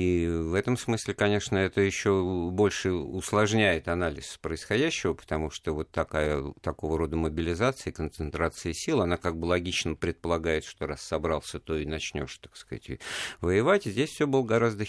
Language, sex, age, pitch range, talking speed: Russian, male, 50-69, 80-105 Hz, 155 wpm